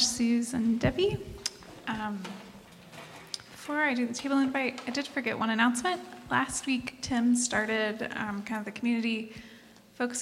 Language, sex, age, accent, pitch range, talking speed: English, female, 20-39, American, 225-280 Hz, 140 wpm